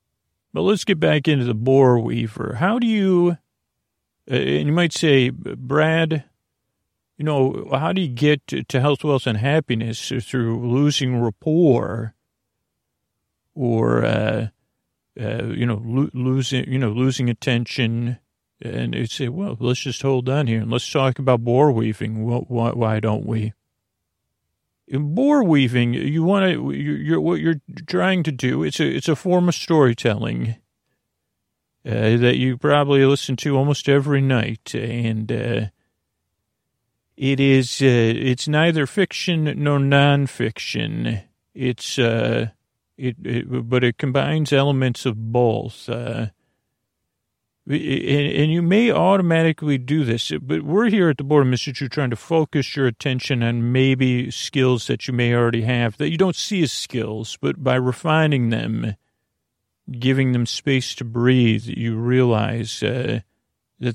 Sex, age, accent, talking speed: male, 40-59, American, 150 wpm